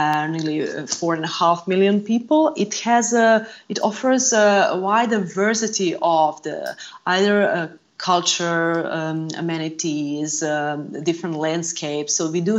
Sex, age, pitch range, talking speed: female, 30-49, 155-195 Hz, 145 wpm